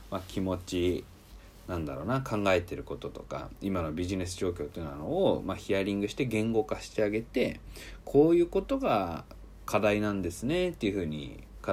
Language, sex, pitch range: Japanese, male, 90-150 Hz